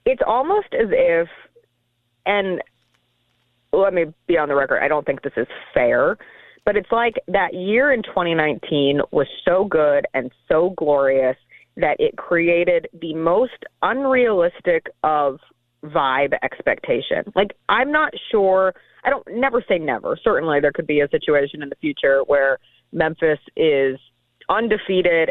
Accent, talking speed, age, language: American, 145 wpm, 30-49, English